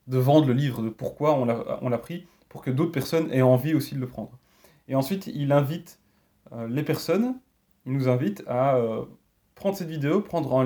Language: French